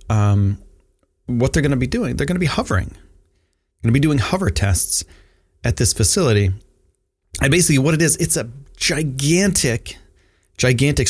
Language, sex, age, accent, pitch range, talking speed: English, male, 30-49, American, 90-135 Hz, 160 wpm